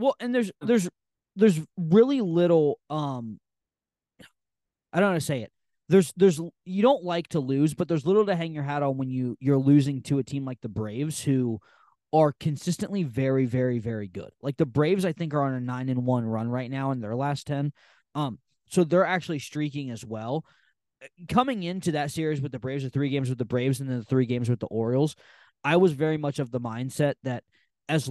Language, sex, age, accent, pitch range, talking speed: English, male, 20-39, American, 130-160 Hz, 215 wpm